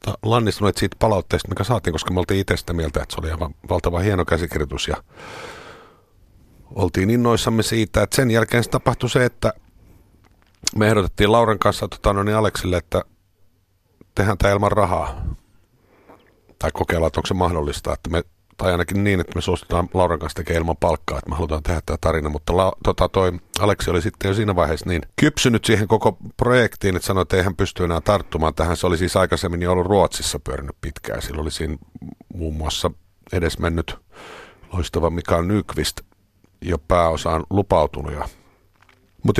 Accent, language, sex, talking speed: native, Finnish, male, 170 wpm